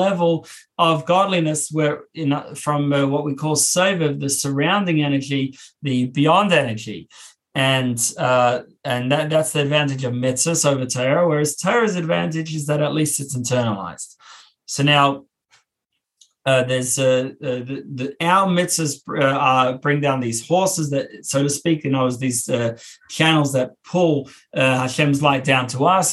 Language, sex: English, male